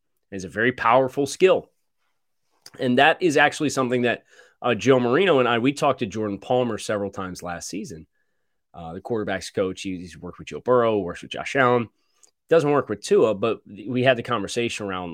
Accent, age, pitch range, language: American, 30-49, 105-155 Hz, English